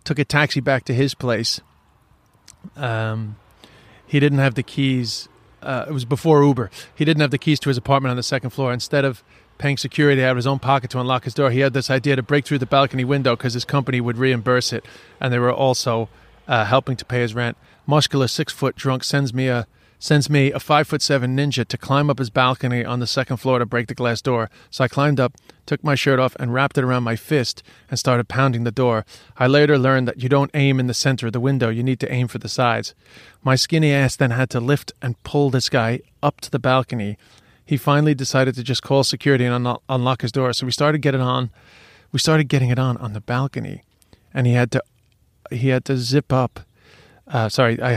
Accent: American